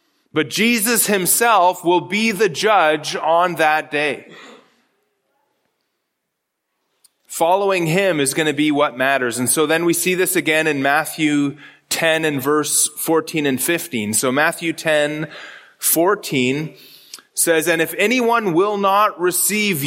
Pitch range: 150-195 Hz